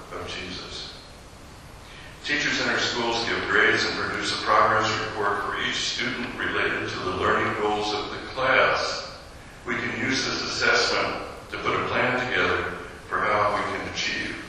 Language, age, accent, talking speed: English, 60-79, American, 160 wpm